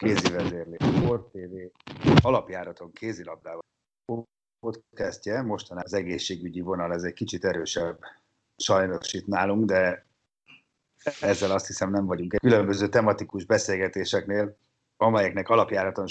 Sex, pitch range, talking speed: male, 95-115 Hz, 110 wpm